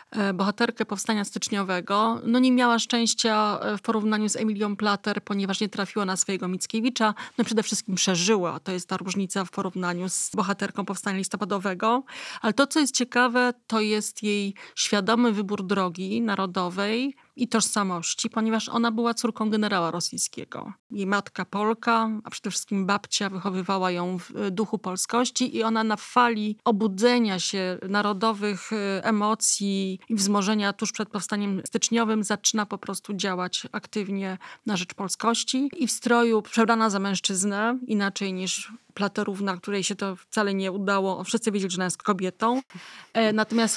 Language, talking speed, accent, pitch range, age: Polish, 145 wpm, native, 195-225 Hz, 30-49